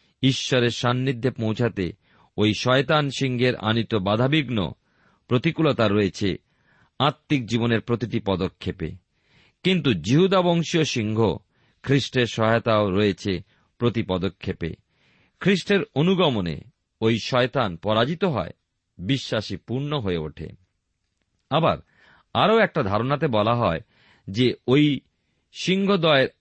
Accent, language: native, Bengali